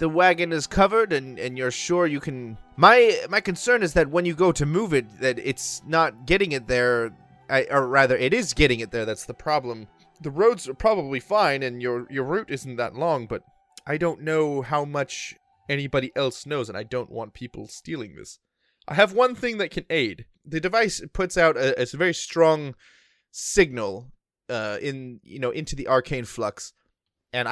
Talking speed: 200 wpm